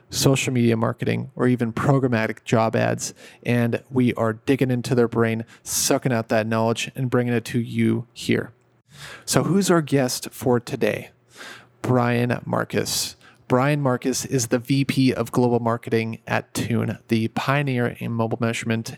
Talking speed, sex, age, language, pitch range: 150 wpm, male, 30-49, English, 115-130 Hz